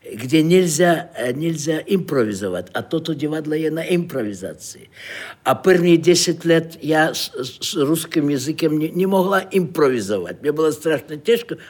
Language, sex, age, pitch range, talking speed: Czech, male, 60-79, 135-200 Hz, 150 wpm